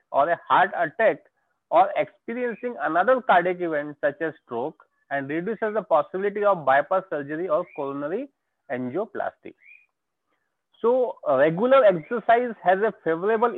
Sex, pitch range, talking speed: male, 160-230 Hz, 125 wpm